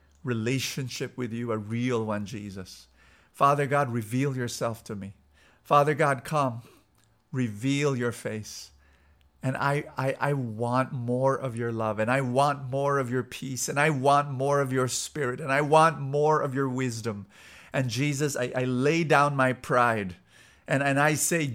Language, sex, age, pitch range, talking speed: English, male, 50-69, 100-135 Hz, 170 wpm